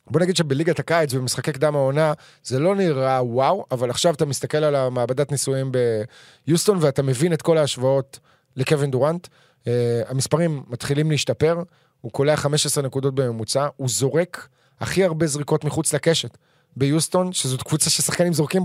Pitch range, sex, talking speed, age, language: 125-155 Hz, male, 150 wpm, 20-39, Hebrew